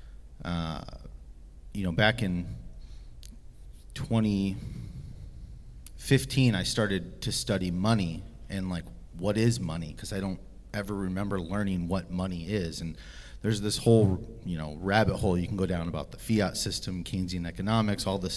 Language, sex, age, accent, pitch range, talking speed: English, male, 30-49, American, 90-115 Hz, 145 wpm